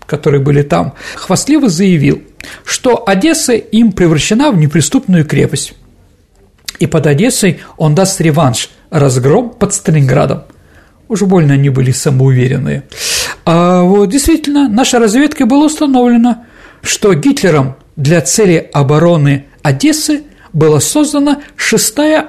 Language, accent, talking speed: Russian, native, 115 wpm